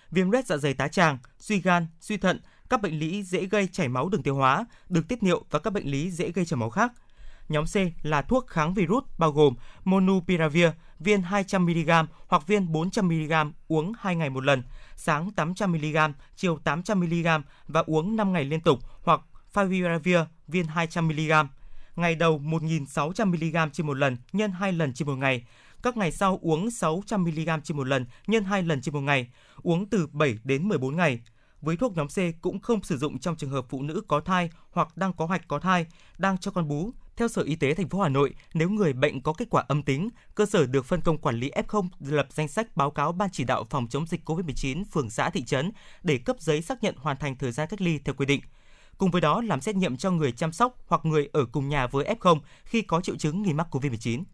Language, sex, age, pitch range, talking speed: Vietnamese, male, 20-39, 145-190 Hz, 220 wpm